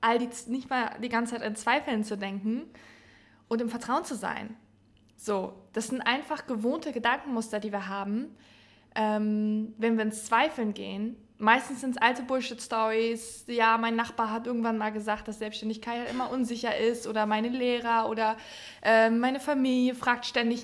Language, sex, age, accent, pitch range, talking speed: German, female, 20-39, German, 220-260 Hz, 165 wpm